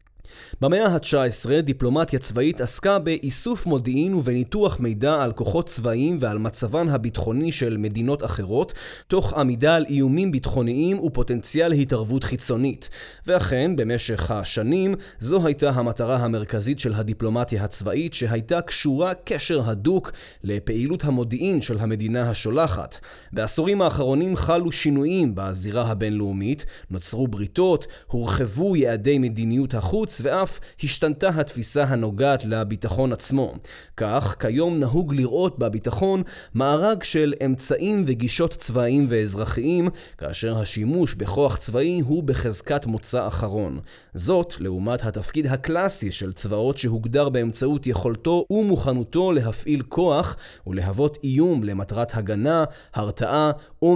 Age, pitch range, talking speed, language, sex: 30-49, 115-155 Hz, 110 wpm, Hebrew, male